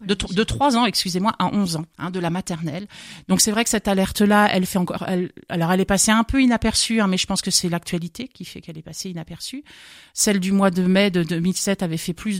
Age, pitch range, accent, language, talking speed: 40-59, 180-215 Hz, French, French, 255 wpm